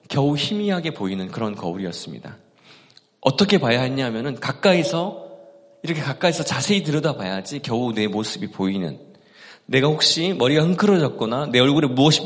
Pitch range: 125-165 Hz